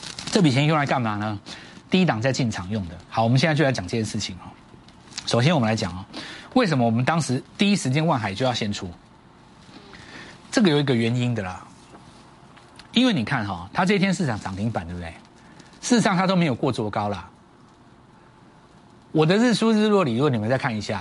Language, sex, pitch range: Chinese, male, 115-180 Hz